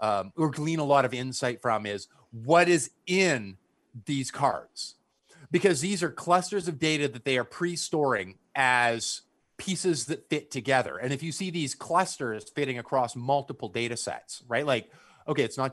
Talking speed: 170 wpm